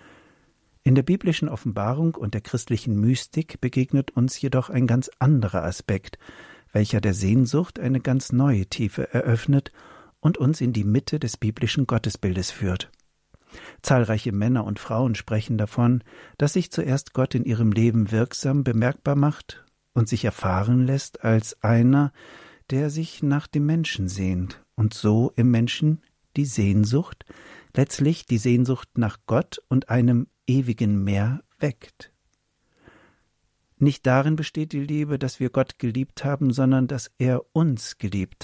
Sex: male